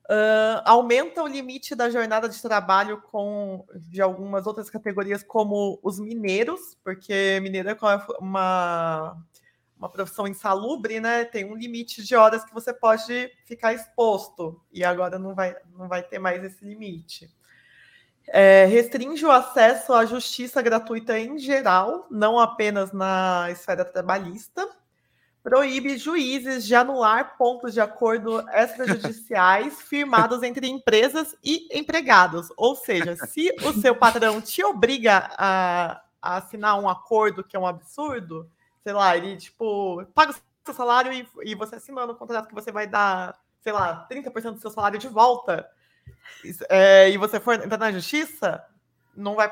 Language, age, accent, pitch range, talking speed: Portuguese, 20-39, Brazilian, 190-245 Hz, 145 wpm